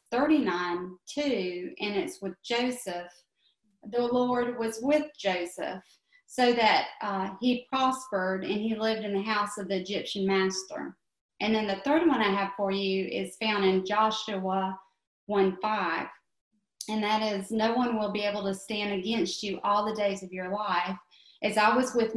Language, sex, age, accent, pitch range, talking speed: English, female, 30-49, American, 185-215 Hz, 170 wpm